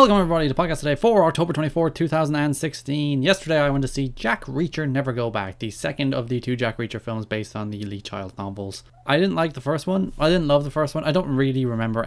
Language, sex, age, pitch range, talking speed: English, male, 20-39, 110-140 Hz, 250 wpm